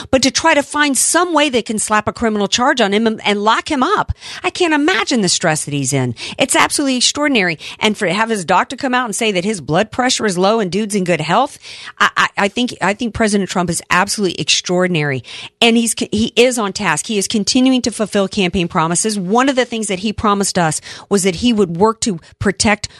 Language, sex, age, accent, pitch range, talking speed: English, female, 50-69, American, 175-235 Hz, 235 wpm